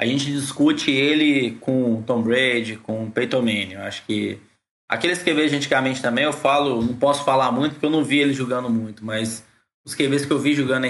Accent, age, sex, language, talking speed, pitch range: Brazilian, 20-39, male, Portuguese, 215 wpm, 120-145 Hz